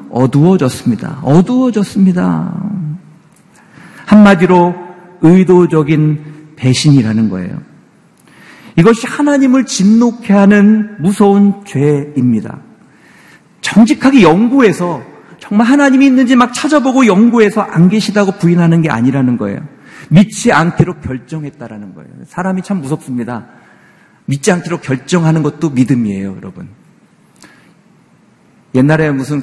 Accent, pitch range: native, 130-190 Hz